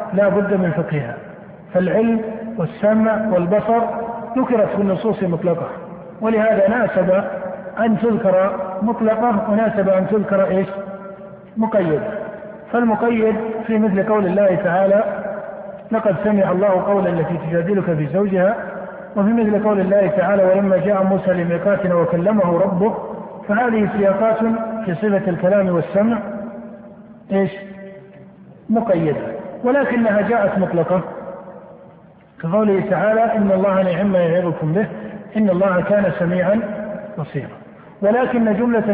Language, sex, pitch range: Arabic, male, 185-215 Hz